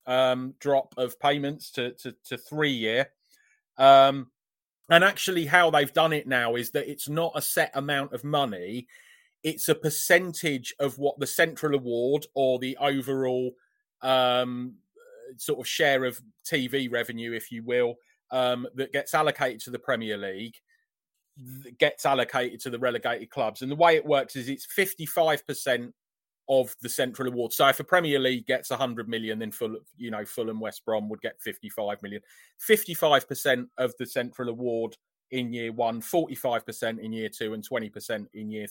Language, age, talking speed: English, 30-49, 175 wpm